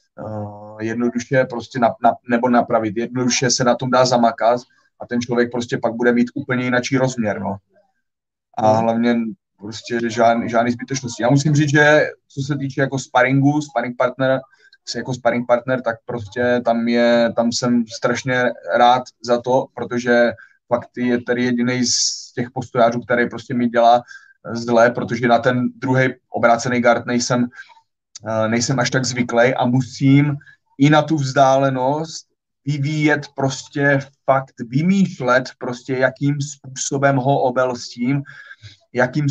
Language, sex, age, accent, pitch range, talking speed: Czech, male, 20-39, native, 120-135 Hz, 145 wpm